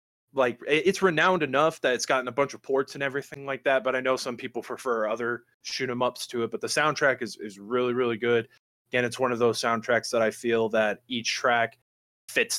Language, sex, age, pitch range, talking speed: English, male, 20-39, 110-130 Hz, 230 wpm